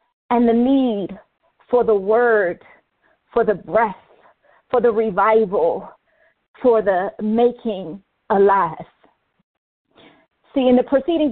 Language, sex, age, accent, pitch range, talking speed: English, female, 40-59, American, 210-255 Hz, 105 wpm